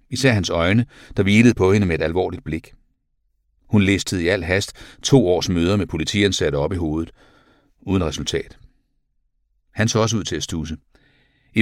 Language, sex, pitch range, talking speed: Danish, male, 80-110 Hz, 175 wpm